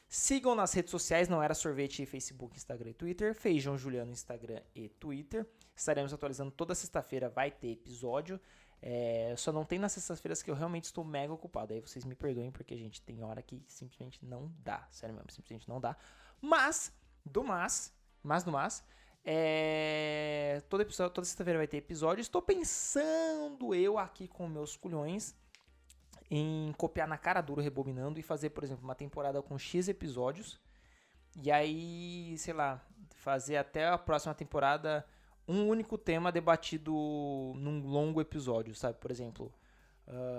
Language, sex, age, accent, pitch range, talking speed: Portuguese, male, 20-39, Brazilian, 130-175 Hz, 160 wpm